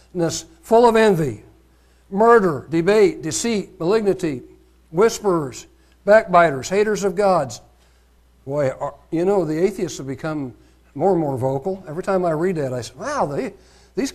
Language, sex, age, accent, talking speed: English, male, 60-79, American, 135 wpm